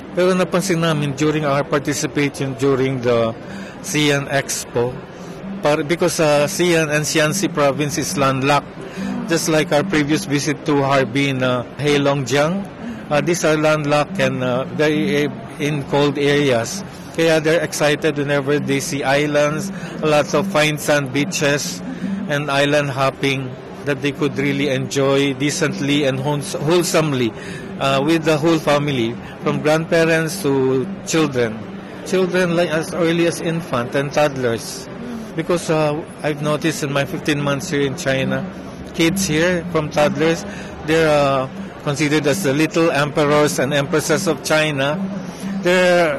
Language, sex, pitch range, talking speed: Filipino, male, 140-170 Hz, 140 wpm